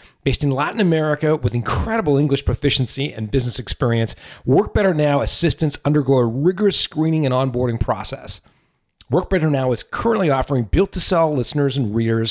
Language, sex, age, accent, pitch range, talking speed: English, male, 40-59, American, 110-145 Hz, 155 wpm